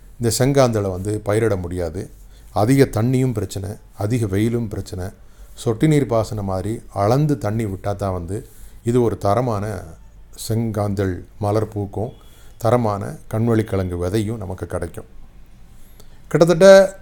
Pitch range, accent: 100-125 Hz, native